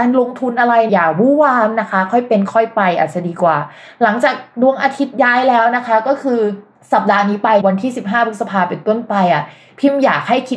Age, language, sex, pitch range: 20-39, Thai, female, 190-250 Hz